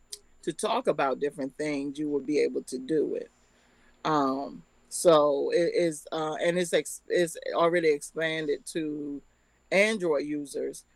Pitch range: 140-175 Hz